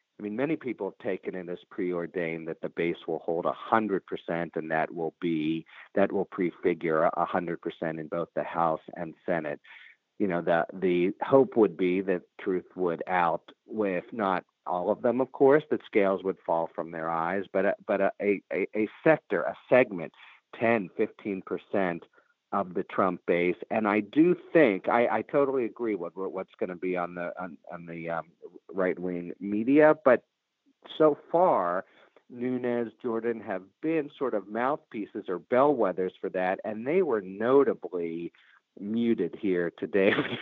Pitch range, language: 85-125 Hz, English